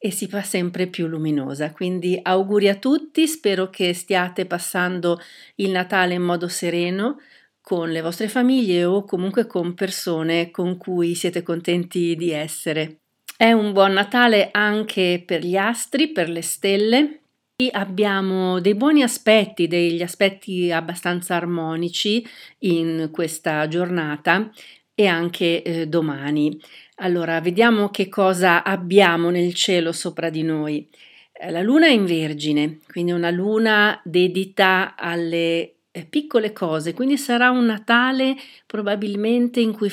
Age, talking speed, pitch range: 40-59, 135 wpm, 175-210 Hz